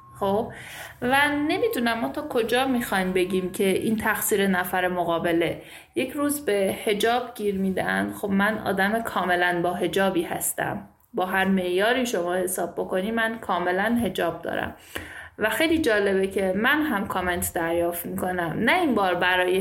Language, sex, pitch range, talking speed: Persian, female, 185-250 Hz, 150 wpm